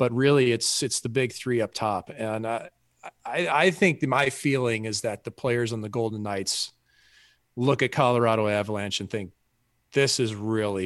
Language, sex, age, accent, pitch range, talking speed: English, male, 40-59, American, 110-135 Hz, 190 wpm